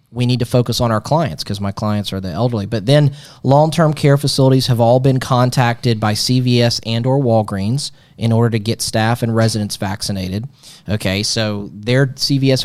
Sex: male